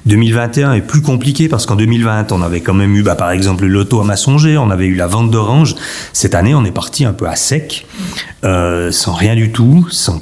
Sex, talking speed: male, 230 wpm